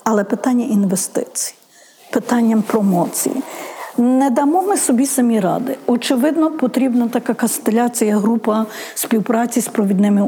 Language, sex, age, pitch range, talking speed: Ukrainian, female, 50-69, 200-250 Hz, 110 wpm